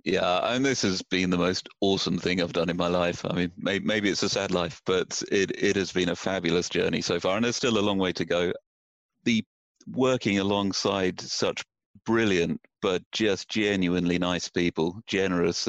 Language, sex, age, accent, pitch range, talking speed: English, male, 40-59, British, 90-100 Hz, 190 wpm